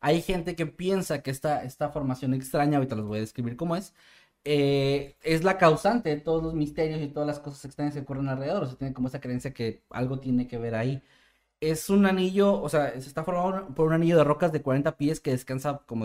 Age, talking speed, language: 20-39, 235 wpm, Spanish